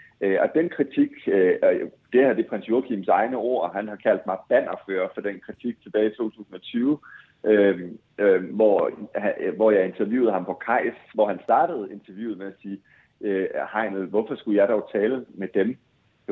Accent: native